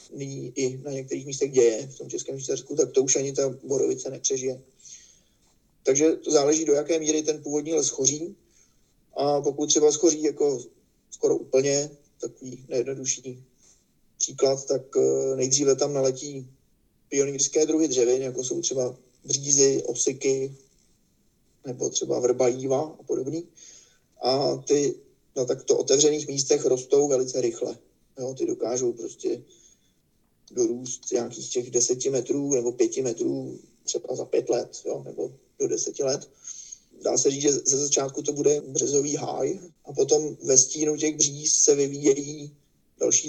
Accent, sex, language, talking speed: native, male, Czech, 145 wpm